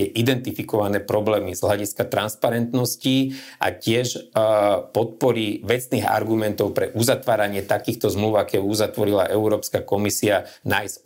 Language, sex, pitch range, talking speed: Slovak, male, 105-125 Hz, 105 wpm